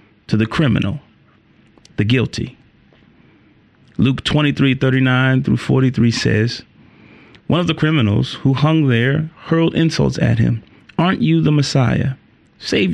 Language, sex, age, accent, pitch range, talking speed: English, male, 30-49, American, 115-150 Hz, 135 wpm